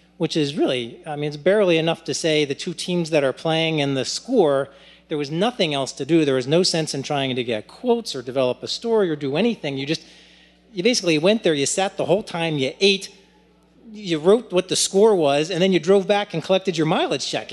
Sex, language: male, English